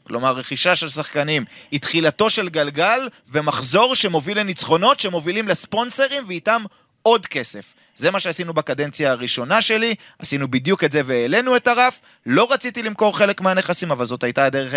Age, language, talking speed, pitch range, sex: 30-49, Hebrew, 155 wpm, 140-215 Hz, male